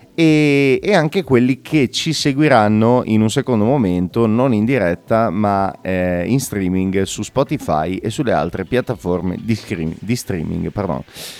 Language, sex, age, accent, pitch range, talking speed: Italian, male, 30-49, native, 100-130 Hz, 135 wpm